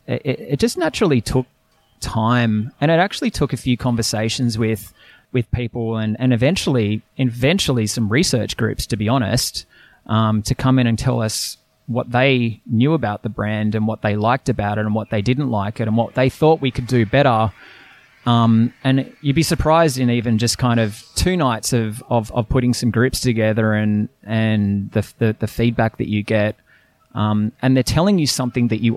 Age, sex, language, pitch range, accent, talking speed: 20-39, male, English, 110-125 Hz, Australian, 195 wpm